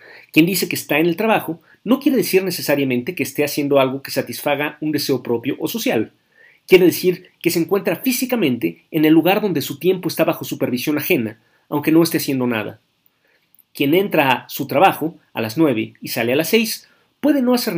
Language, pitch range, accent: Spanish, 125-170 Hz, Mexican